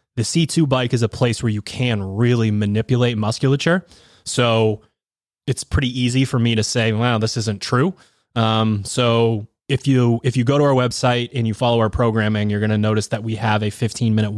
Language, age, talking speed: English, 20-39, 205 wpm